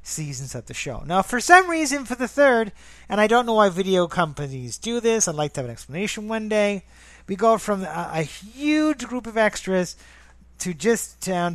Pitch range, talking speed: 140-215 Hz, 210 wpm